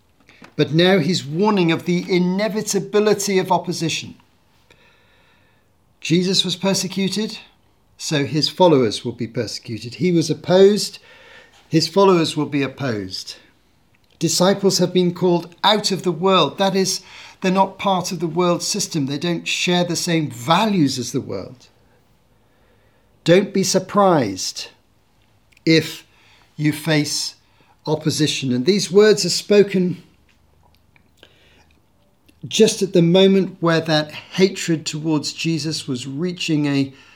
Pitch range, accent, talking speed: 145-185 Hz, British, 125 wpm